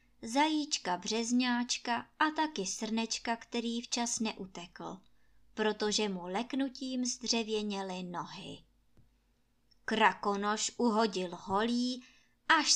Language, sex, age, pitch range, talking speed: Czech, male, 20-39, 200-260 Hz, 80 wpm